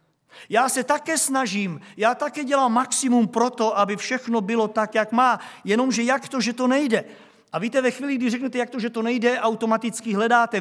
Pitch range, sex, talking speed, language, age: 200-245 Hz, male, 200 wpm, Czech, 50-69